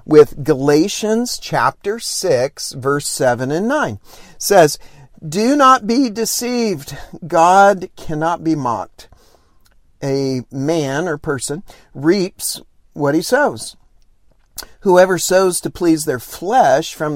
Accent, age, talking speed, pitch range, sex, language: American, 50-69, 110 wpm, 130-175 Hz, male, English